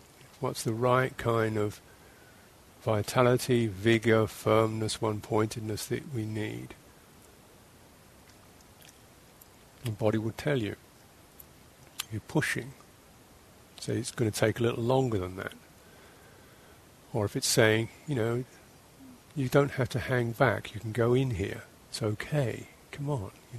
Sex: male